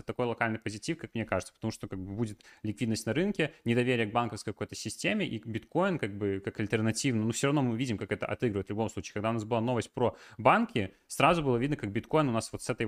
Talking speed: 245 wpm